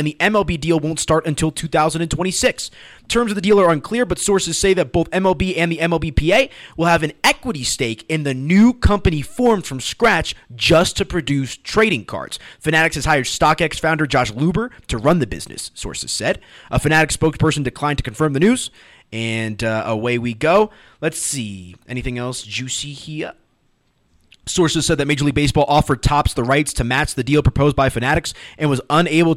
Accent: American